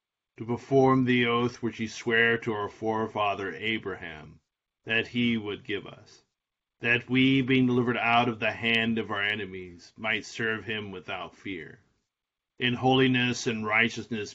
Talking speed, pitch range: 150 wpm, 105-120 Hz